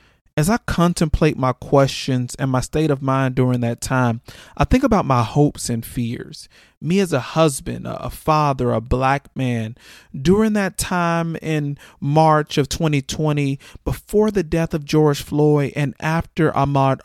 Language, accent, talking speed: English, American, 160 wpm